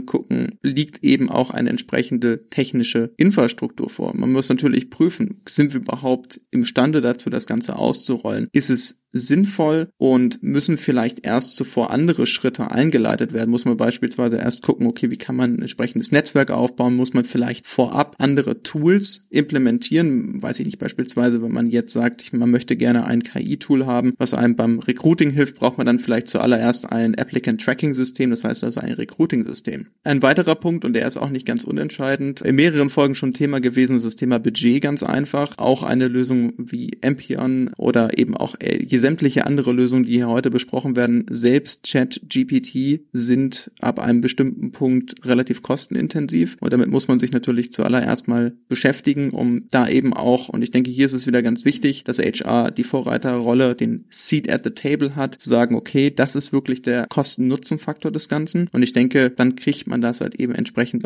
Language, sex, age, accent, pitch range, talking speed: German, male, 30-49, German, 120-150 Hz, 180 wpm